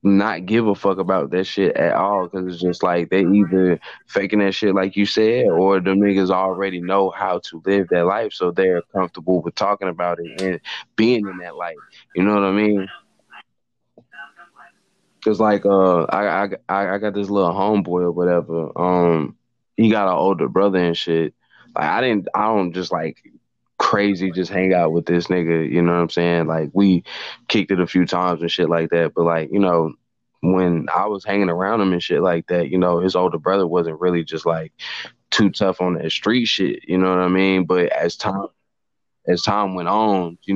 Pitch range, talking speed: 85-100 Hz, 205 wpm